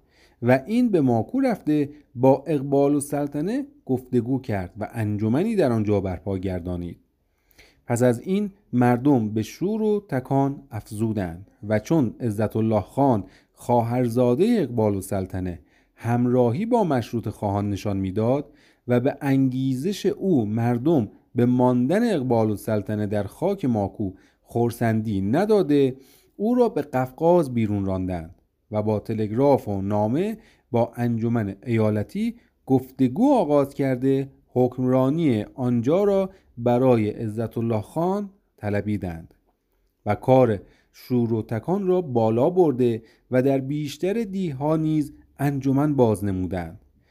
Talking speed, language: 125 wpm, Persian